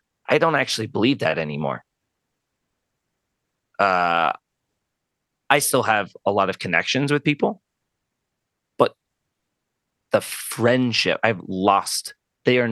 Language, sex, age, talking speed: English, male, 30-49, 110 wpm